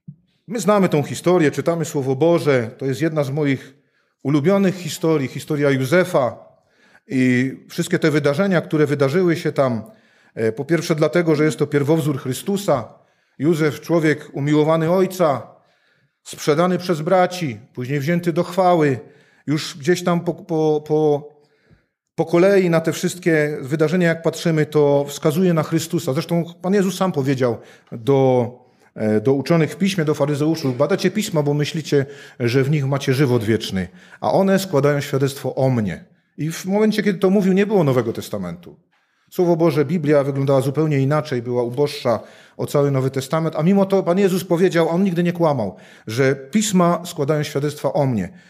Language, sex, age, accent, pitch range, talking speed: Polish, male, 40-59, native, 140-175 Hz, 155 wpm